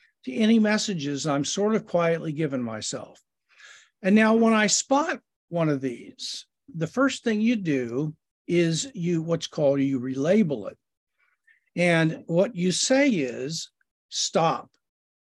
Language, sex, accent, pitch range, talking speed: English, male, American, 155-225 Hz, 135 wpm